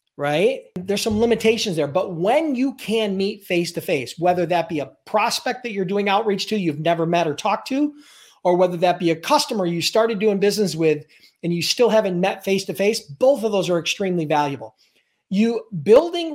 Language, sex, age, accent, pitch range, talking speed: English, male, 40-59, American, 165-220 Hz, 205 wpm